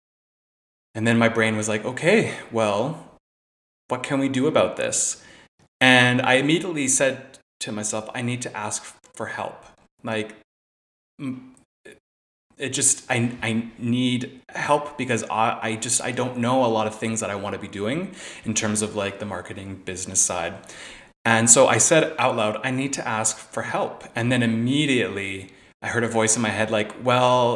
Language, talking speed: English, 180 wpm